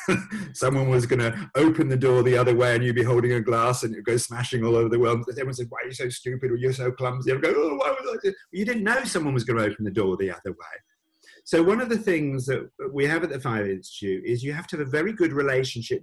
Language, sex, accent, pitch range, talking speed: English, male, British, 125-210 Hz, 260 wpm